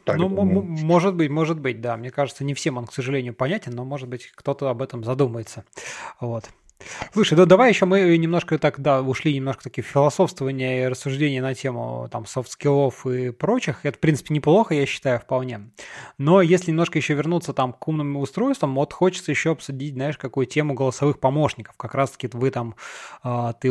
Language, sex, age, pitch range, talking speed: Russian, male, 20-39, 130-170 Hz, 190 wpm